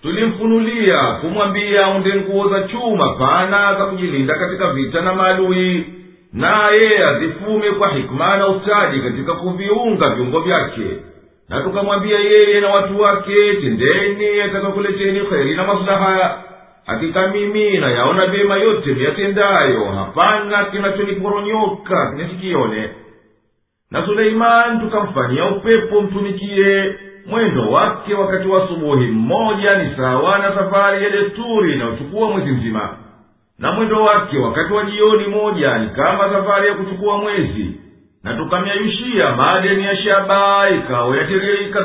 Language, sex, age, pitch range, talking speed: Swahili, male, 50-69, 175-205 Hz, 115 wpm